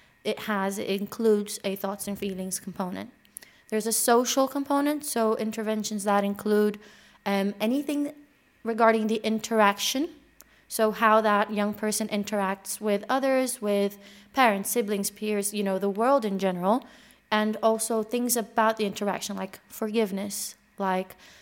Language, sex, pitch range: English, female, 195-225 Hz